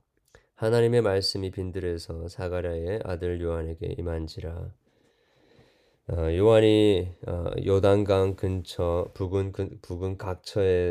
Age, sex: 20-39, male